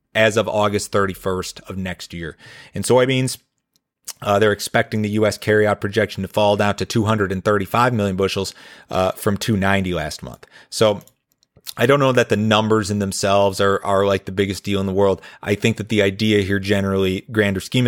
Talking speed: 185 wpm